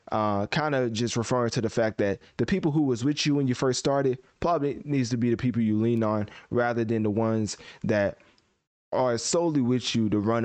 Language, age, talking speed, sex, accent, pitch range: English, 20-39, 220 wpm, male, American, 105-130 Hz